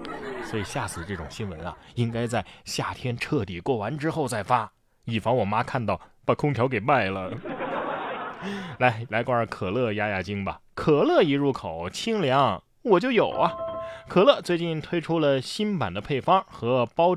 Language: Chinese